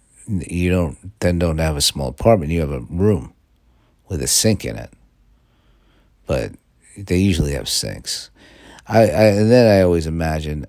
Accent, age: American, 50-69